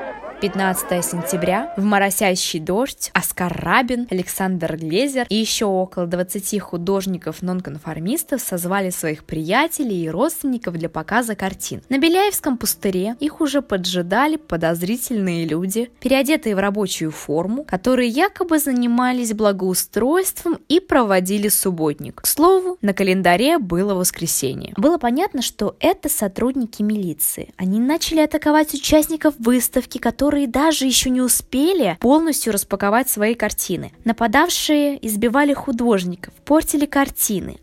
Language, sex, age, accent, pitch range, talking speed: Russian, female, 20-39, native, 195-285 Hz, 115 wpm